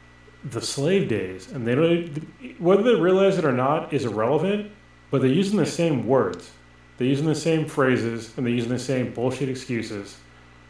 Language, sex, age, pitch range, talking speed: English, male, 30-49, 100-150 Hz, 180 wpm